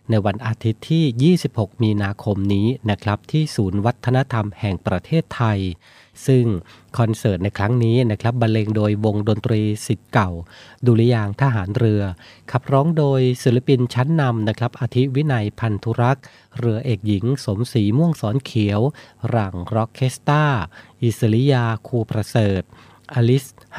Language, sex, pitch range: Thai, male, 105-130 Hz